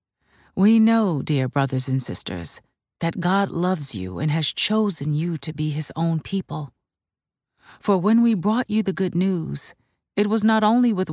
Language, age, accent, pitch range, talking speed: English, 40-59, American, 155-205 Hz, 175 wpm